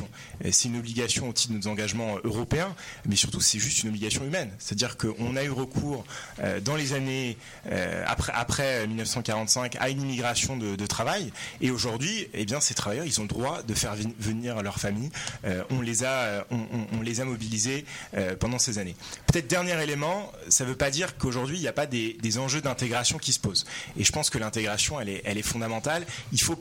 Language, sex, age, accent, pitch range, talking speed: French, male, 30-49, French, 110-135 Hz, 220 wpm